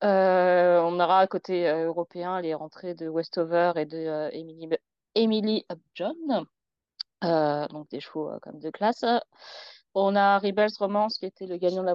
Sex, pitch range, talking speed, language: female, 170-215 Hz, 165 wpm, French